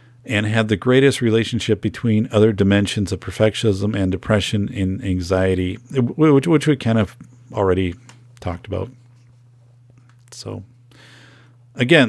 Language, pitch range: English, 100-125 Hz